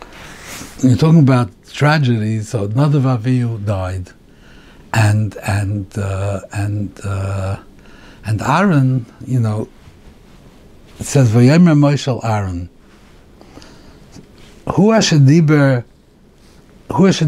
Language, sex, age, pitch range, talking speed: English, male, 60-79, 100-140 Hz, 95 wpm